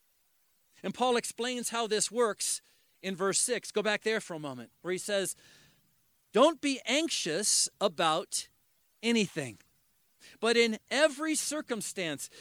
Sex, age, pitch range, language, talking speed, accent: male, 40-59, 200-275 Hz, English, 130 wpm, American